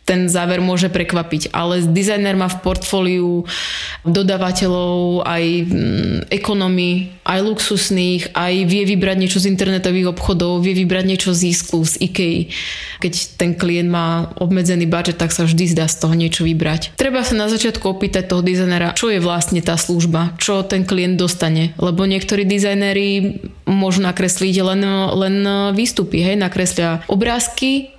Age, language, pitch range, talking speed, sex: 20-39, Slovak, 175-195 Hz, 150 wpm, female